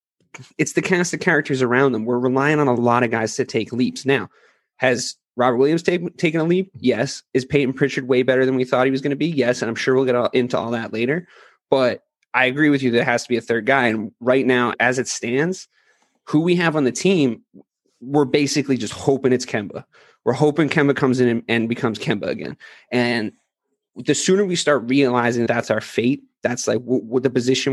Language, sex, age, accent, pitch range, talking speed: English, male, 30-49, American, 125-155 Hz, 220 wpm